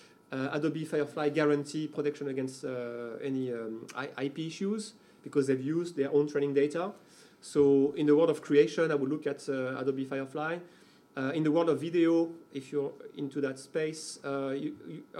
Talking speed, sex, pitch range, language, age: 170 wpm, male, 140-165 Hz, English, 40-59